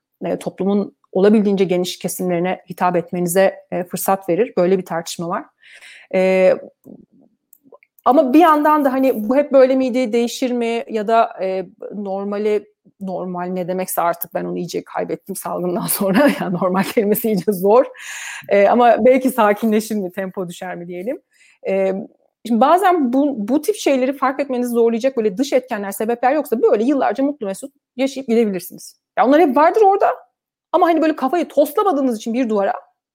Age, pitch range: 30-49, 195-270 Hz